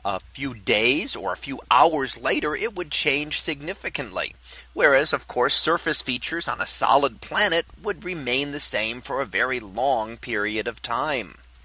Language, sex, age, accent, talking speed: English, male, 30-49, American, 165 wpm